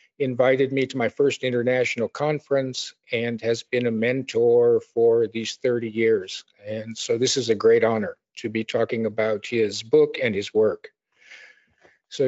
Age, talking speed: 50-69, 160 wpm